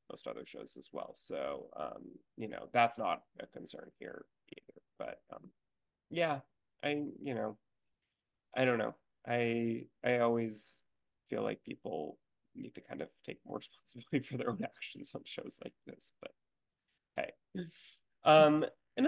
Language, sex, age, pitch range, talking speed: English, male, 20-39, 110-135 Hz, 150 wpm